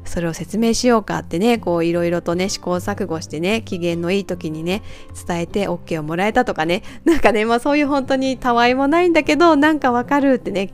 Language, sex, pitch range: Japanese, female, 175-250 Hz